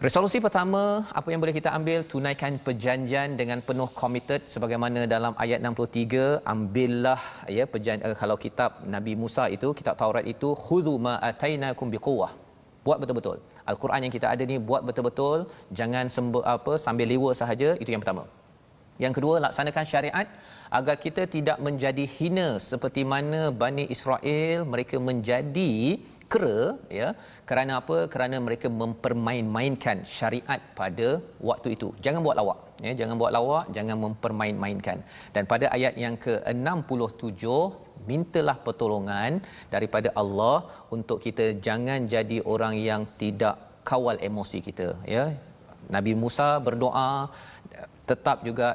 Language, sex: Malayalam, male